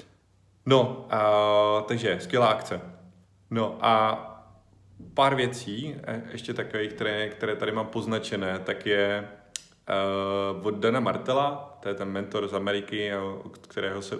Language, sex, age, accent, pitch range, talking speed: Czech, male, 30-49, native, 95-110 Hz, 125 wpm